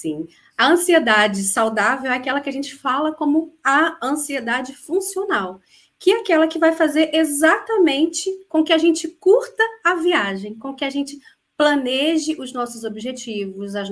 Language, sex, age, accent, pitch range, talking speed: Portuguese, female, 30-49, Brazilian, 230-320 Hz, 160 wpm